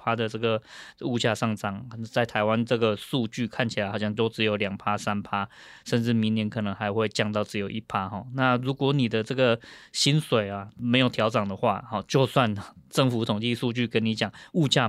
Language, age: Chinese, 20-39